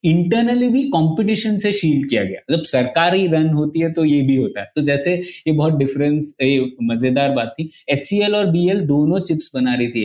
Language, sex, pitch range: Hindi, male, 130-180 Hz